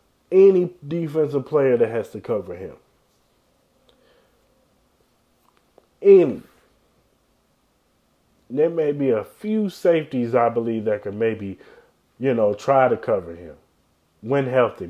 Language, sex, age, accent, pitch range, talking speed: English, male, 30-49, American, 110-145 Hz, 115 wpm